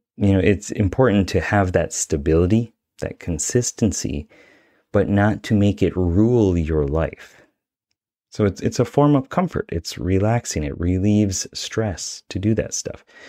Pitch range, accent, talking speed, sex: 80-105 Hz, American, 155 wpm, male